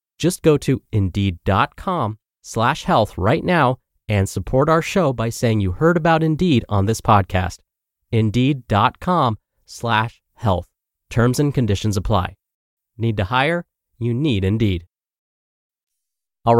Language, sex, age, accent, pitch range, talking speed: English, male, 30-49, American, 105-145 Hz, 125 wpm